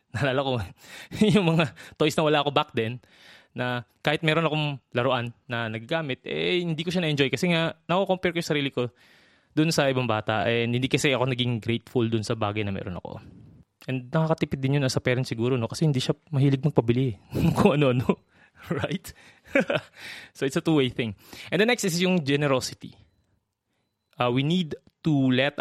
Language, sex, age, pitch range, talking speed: Filipino, male, 20-39, 115-150 Hz, 180 wpm